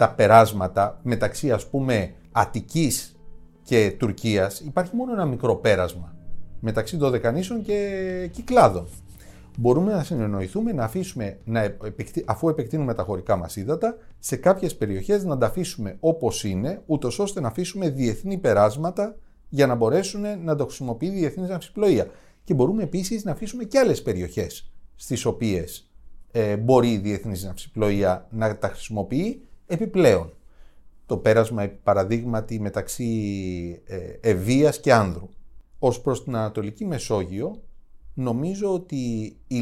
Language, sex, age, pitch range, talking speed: Greek, male, 30-49, 100-165 Hz, 135 wpm